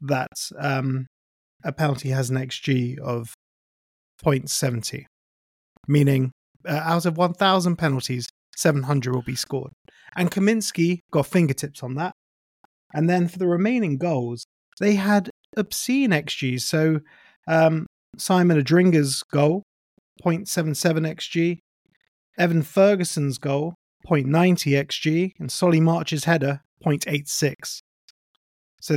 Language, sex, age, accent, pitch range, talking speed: English, male, 30-49, British, 135-175 Hz, 110 wpm